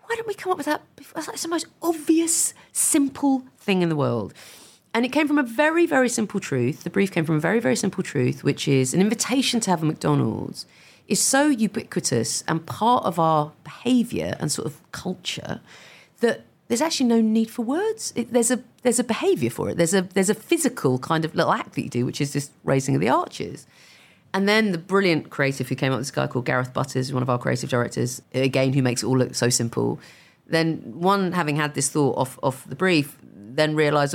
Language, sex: English, female